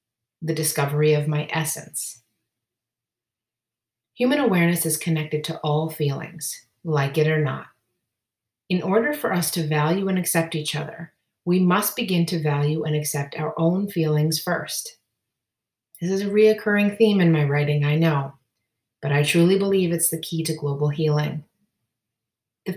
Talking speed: 155 wpm